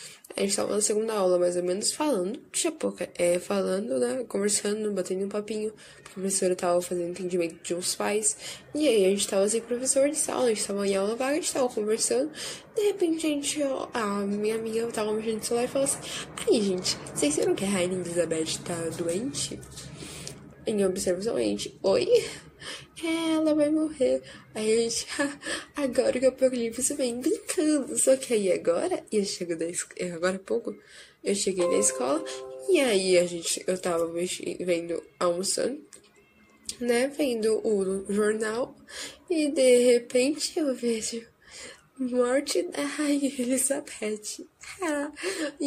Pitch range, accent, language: 185-270 Hz, Brazilian, Portuguese